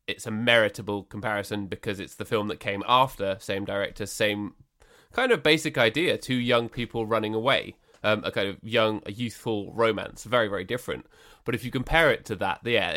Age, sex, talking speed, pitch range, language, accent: 20-39, male, 195 wpm, 100-125 Hz, English, British